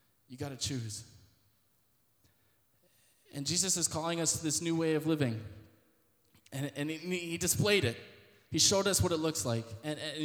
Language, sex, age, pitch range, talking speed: English, male, 20-39, 115-155 Hz, 170 wpm